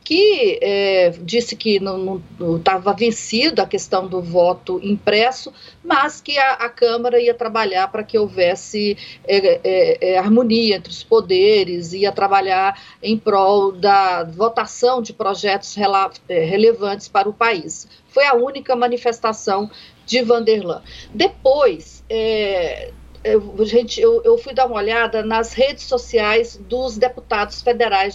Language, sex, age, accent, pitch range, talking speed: Portuguese, female, 40-59, Brazilian, 195-260 Hz, 135 wpm